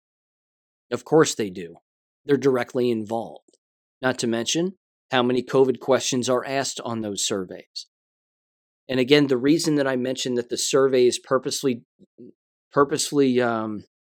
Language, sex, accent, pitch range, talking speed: English, male, American, 120-135 Hz, 140 wpm